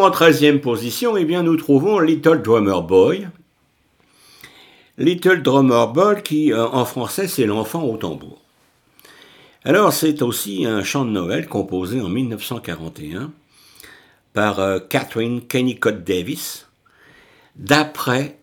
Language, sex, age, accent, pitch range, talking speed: French, male, 60-79, French, 100-140 Hz, 110 wpm